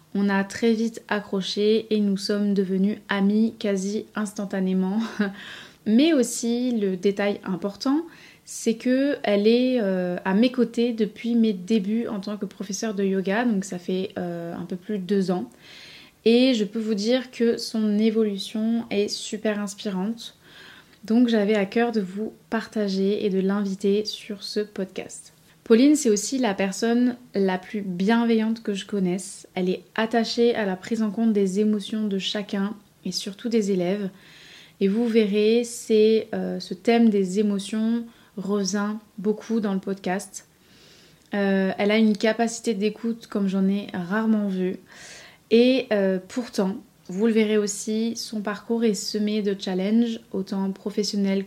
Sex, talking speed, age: female, 155 wpm, 20-39